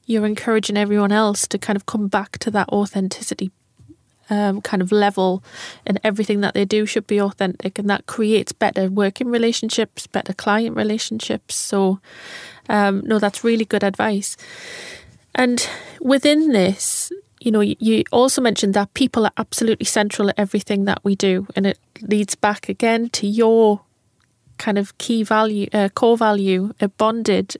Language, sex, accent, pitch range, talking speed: English, female, British, 200-230 Hz, 160 wpm